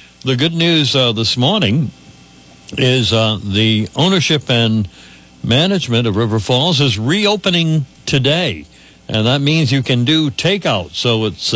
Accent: American